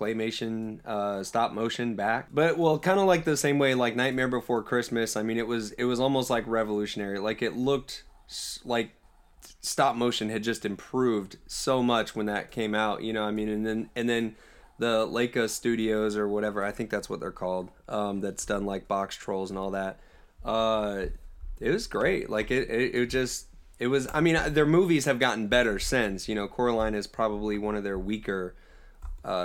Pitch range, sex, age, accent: 100-120 Hz, male, 20-39, American